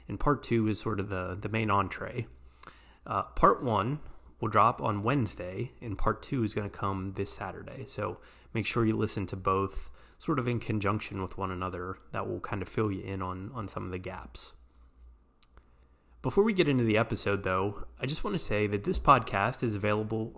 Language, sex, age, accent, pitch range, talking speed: English, male, 30-49, American, 95-120 Hz, 205 wpm